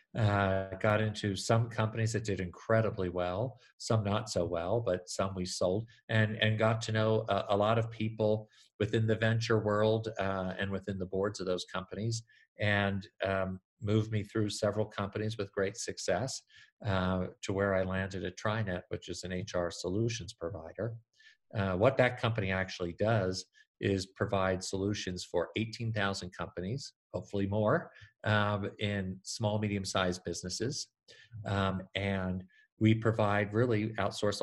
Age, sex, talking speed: 50-69, male, 155 wpm